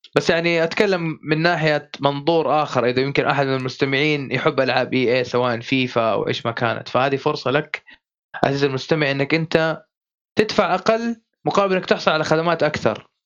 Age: 20-39